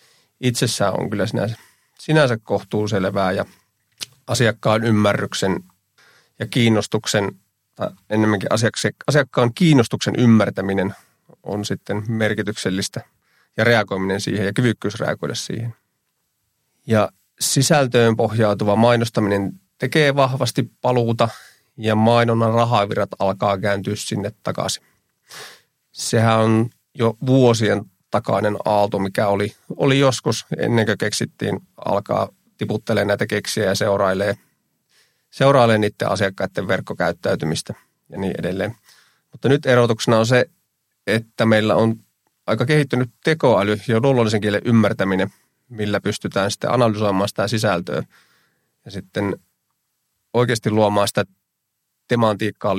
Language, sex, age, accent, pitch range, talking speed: Finnish, male, 30-49, native, 100-120 Hz, 105 wpm